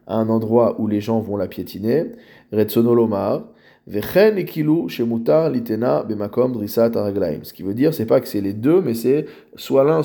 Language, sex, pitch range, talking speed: French, male, 110-125 Hz, 135 wpm